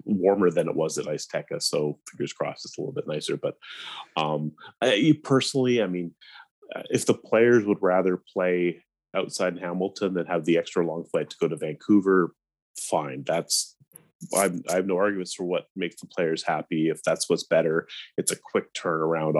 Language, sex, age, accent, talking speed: English, male, 30-49, American, 190 wpm